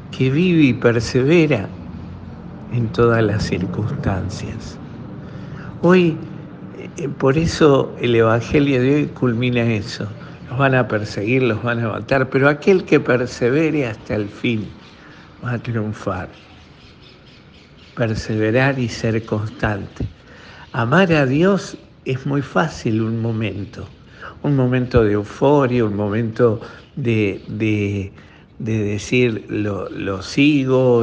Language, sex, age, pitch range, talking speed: Spanish, male, 60-79, 105-130 Hz, 115 wpm